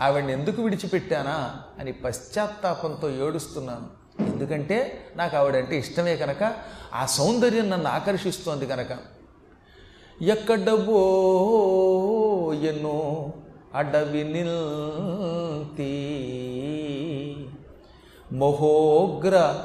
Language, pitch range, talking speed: Telugu, 145-205 Hz, 60 wpm